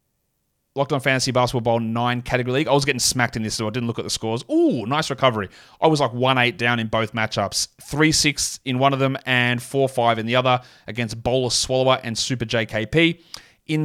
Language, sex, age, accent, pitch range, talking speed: English, male, 30-49, Australian, 115-135 Hz, 210 wpm